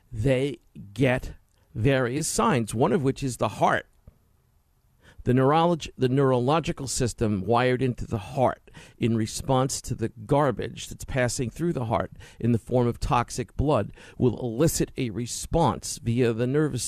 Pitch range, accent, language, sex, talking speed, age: 105-140 Hz, American, English, male, 150 wpm, 50-69